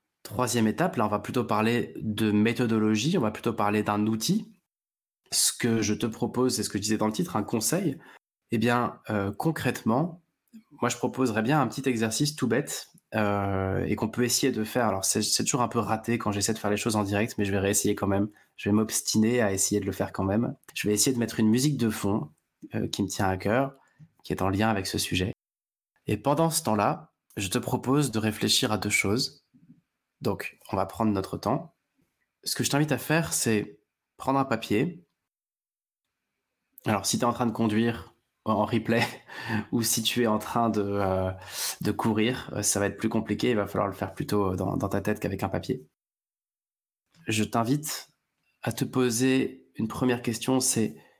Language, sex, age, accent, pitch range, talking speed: French, male, 20-39, French, 105-125 Hz, 205 wpm